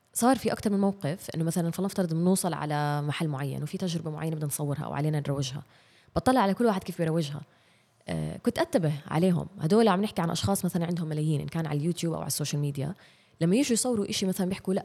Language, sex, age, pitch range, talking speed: Arabic, female, 20-39, 150-185 Hz, 215 wpm